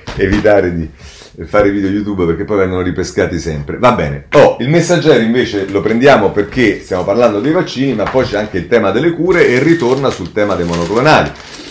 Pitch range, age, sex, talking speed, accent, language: 85-130 Hz, 40-59, male, 190 wpm, native, Italian